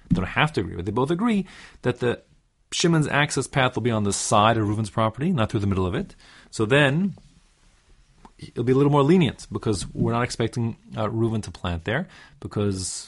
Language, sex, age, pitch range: English, male, 30-49, 100-130 Hz